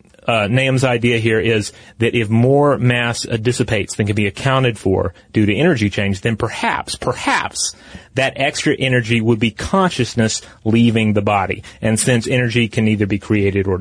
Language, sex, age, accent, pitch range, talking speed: English, male, 30-49, American, 105-130 Hz, 170 wpm